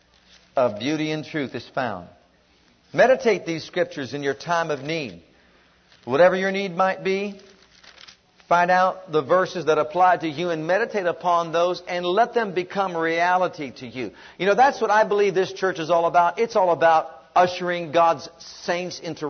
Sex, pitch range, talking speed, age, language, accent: male, 145-190 Hz, 175 wpm, 50-69, English, American